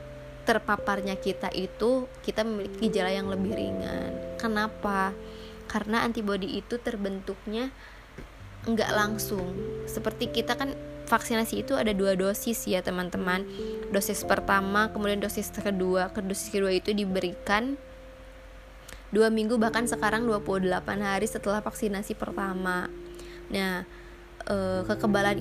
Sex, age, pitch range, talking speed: female, 20-39, 180-220 Hz, 110 wpm